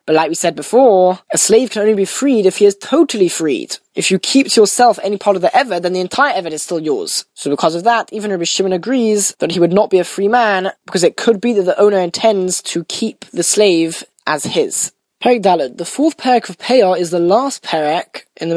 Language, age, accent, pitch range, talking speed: English, 10-29, British, 170-220 Hz, 245 wpm